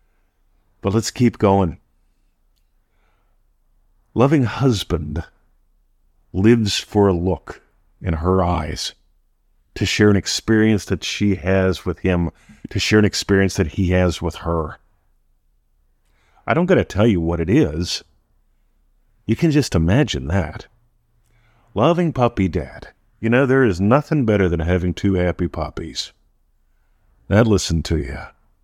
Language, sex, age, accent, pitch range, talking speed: English, male, 50-69, American, 80-110 Hz, 130 wpm